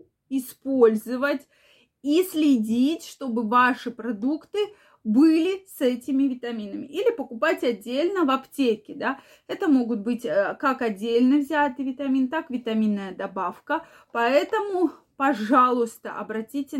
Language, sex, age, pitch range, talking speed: Russian, female, 20-39, 230-285 Hz, 105 wpm